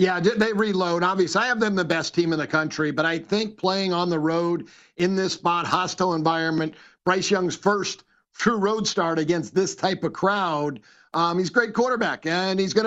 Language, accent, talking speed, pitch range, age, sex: English, American, 205 wpm, 165-195 Hz, 50-69, male